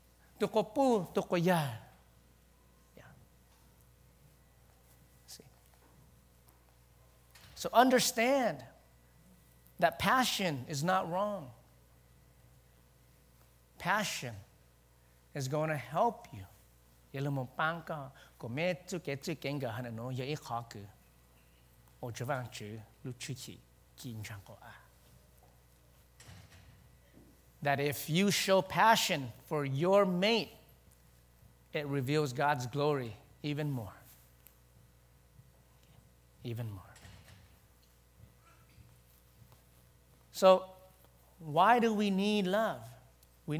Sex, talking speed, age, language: male, 70 wpm, 50-69, English